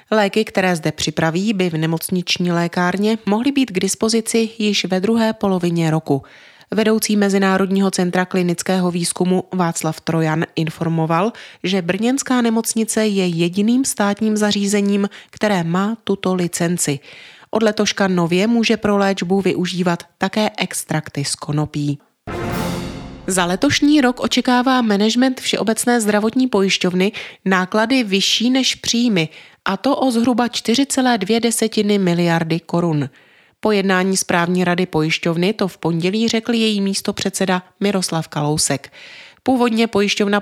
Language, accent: Czech, native